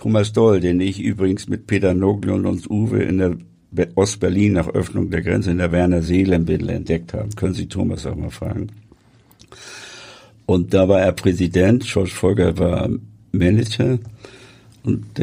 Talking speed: 155 wpm